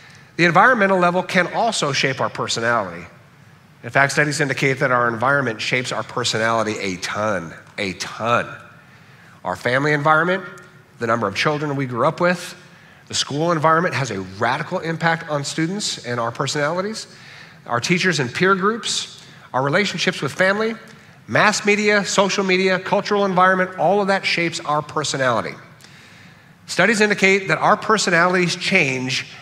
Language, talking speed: English, 145 wpm